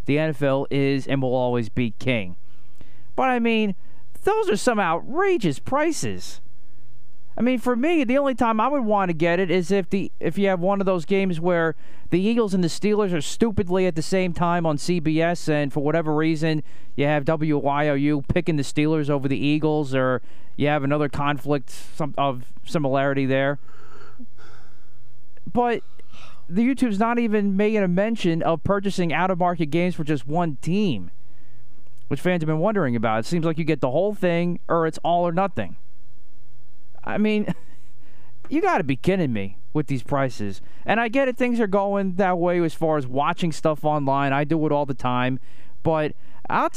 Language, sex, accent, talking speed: English, male, American, 185 wpm